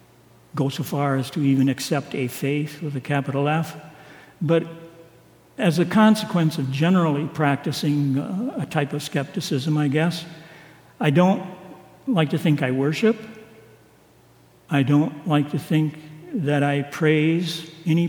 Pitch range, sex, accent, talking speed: 150-170 Hz, male, American, 140 wpm